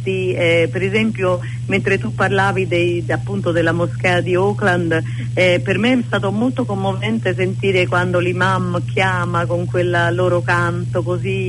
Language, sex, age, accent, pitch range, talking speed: Italian, female, 40-59, native, 100-125 Hz, 145 wpm